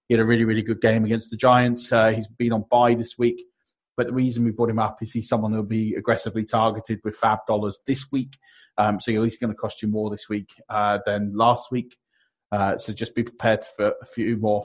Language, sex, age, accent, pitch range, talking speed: English, male, 30-49, British, 105-120 Hz, 245 wpm